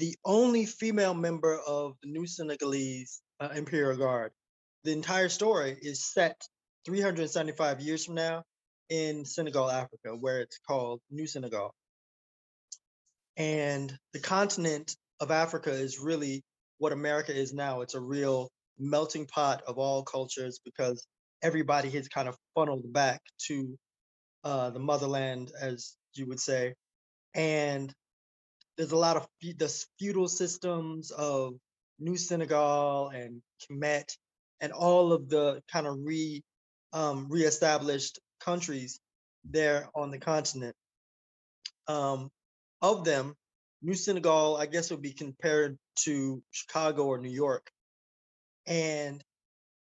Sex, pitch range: male, 135-160 Hz